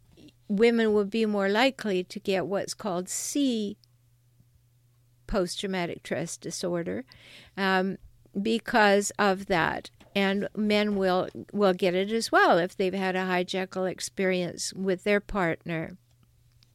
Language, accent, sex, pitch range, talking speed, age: English, American, female, 185-245 Hz, 120 wpm, 60-79